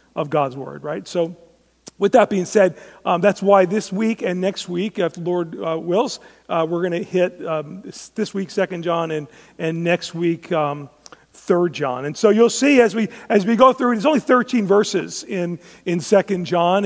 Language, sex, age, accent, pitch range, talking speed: English, male, 40-59, American, 175-215 Hz, 220 wpm